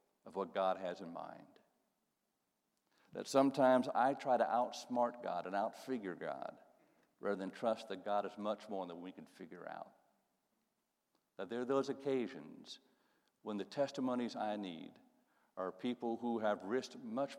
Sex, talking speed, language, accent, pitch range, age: male, 155 wpm, English, American, 105-135 Hz, 60-79